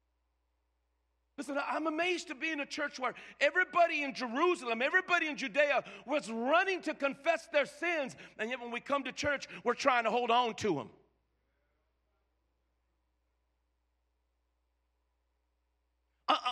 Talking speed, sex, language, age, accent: 130 wpm, male, English, 50-69, American